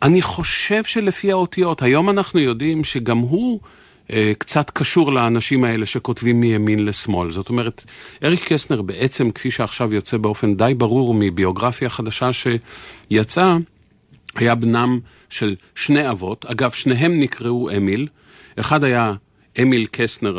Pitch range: 105-140 Hz